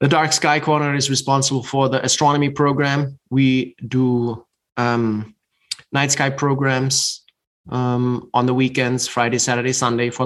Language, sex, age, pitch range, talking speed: English, male, 20-39, 115-135 Hz, 140 wpm